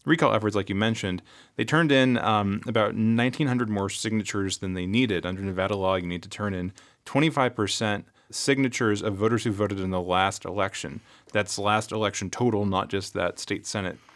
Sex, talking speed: male, 185 wpm